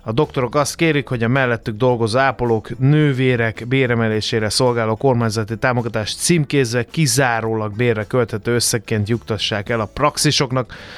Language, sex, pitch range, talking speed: Hungarian, male, 110-130 Hz, 120 wpm